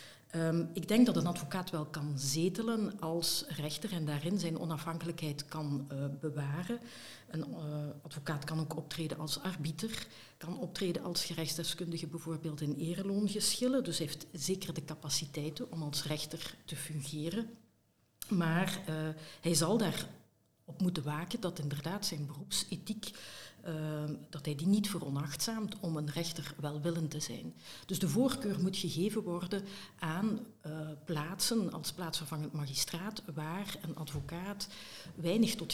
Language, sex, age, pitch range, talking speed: Dutch, female, 50-69, 150-185 Hz, 140 wpm